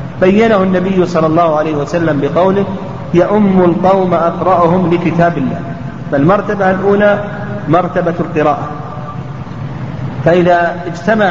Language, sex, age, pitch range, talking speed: Arabic, male, 40-59, 155-185 Hz, 100 wpm